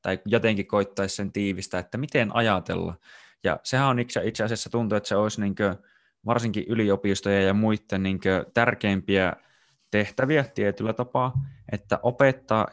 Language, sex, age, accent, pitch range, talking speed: Finnish, male, 20-39, native, 95-110 Hz, 135 wpm